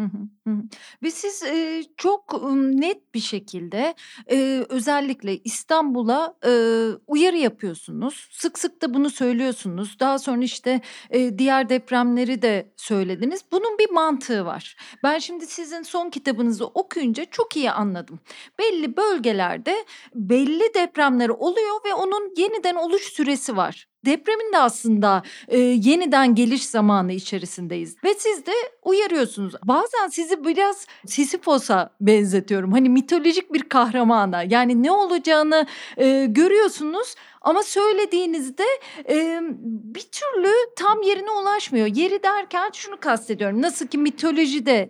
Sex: female